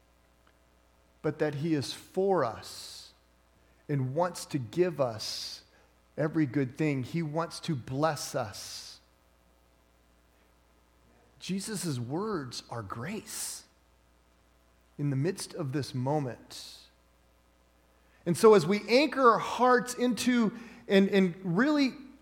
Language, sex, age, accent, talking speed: English, male, 40-59, American, 110 wpm